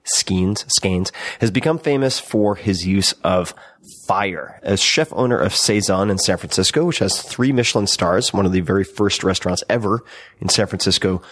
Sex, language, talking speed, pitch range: male, English, 175 wpm, 95-115 Hz